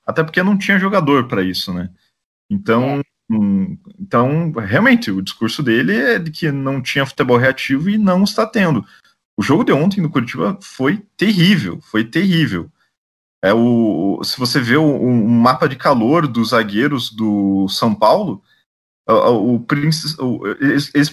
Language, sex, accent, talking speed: Portuguese, male, Brazilian, 140 wpm